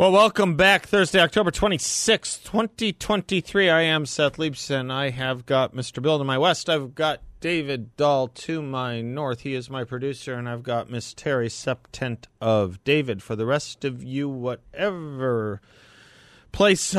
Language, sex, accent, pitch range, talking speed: English, male, American, 105-145 Hz, 170 wpm